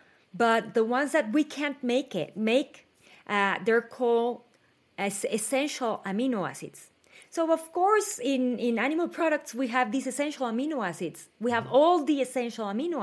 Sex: female